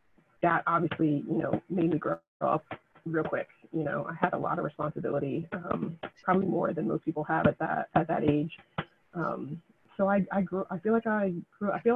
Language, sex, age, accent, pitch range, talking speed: English, female, 20-39, American, 165-195 Hz, 210 wpm